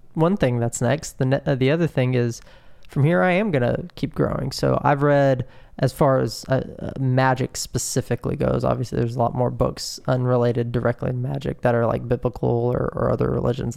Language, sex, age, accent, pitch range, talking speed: English, male, 20-39, American, 120-135 Hz, 200 wpm